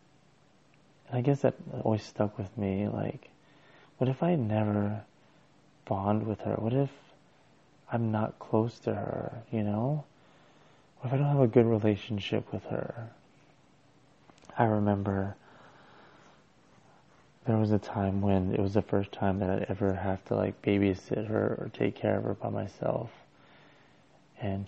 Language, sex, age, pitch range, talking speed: English, male, 30-49, 100-120 Hz, 150 wpm